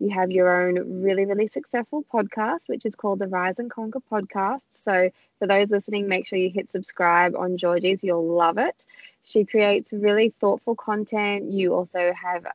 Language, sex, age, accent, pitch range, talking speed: English, female, 20-39, Australian, 185-225 Hz, 180 wpm